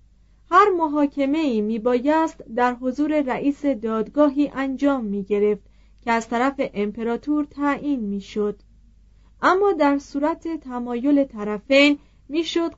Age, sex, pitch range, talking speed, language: 30-49, female, 215-290 Hz, 100 wpm, Persian